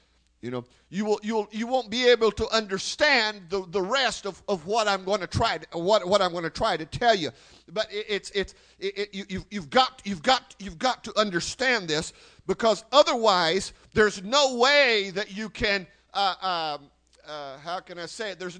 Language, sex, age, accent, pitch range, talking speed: English, male, 50-69, American, 175-235 Hz, 215 wpm